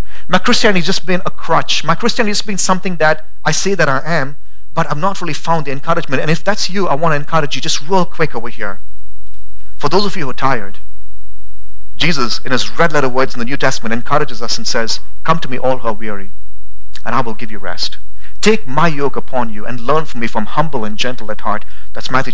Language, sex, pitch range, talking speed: English, male, 105-175 Hz, 240 wpm